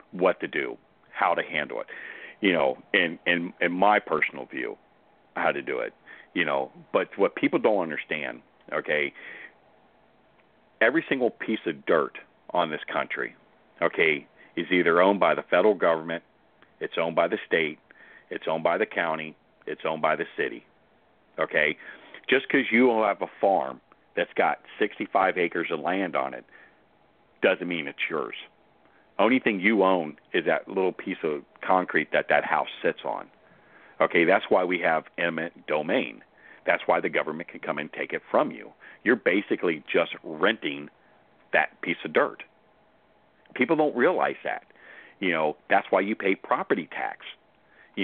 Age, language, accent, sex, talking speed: 40-59, English, American, male, 160 wpm